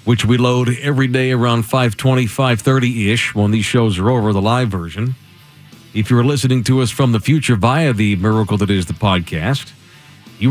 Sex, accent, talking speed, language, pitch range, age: male, American, 185 wpm, English, 105-140 Hz, 50-69